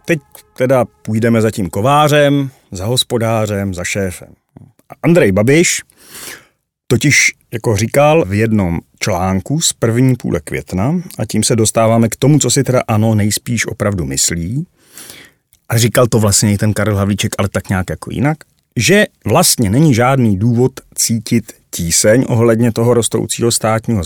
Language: Czech